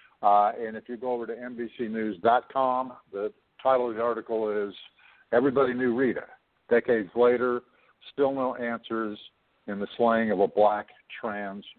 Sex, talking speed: male, 150 wpm